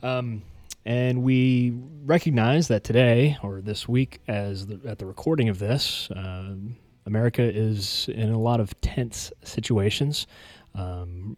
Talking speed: 125 wpm